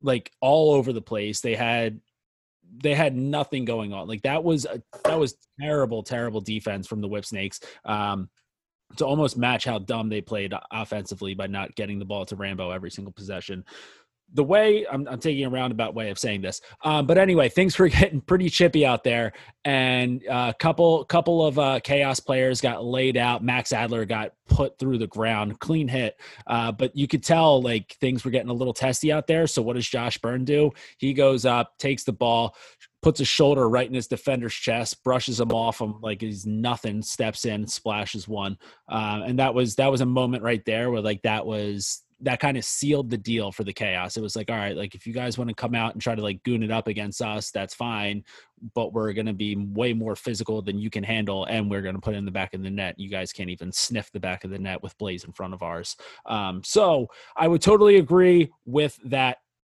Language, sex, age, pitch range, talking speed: English, male, 20-39, 105-135 Hz, 225 wpm